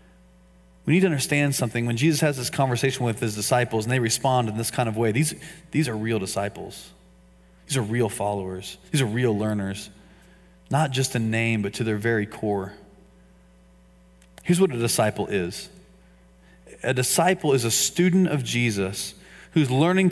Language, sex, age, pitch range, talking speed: English, male, 30-49, 100-155 Hz, 170 wpm